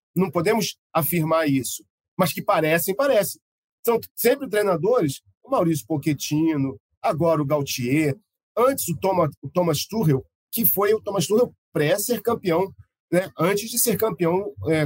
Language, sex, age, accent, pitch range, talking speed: Portuguese, male, 40-59, Brazilian, 140-180 Hz, 145 wpm